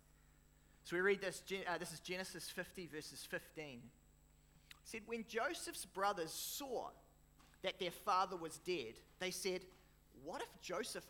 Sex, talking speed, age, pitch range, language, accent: male, 145 wpm, 30-49, 135-190 Hz, English, Australian